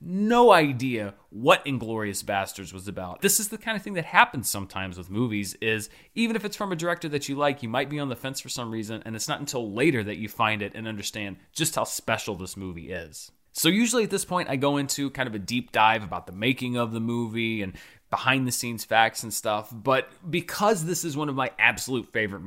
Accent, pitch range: American, 105-150 Hz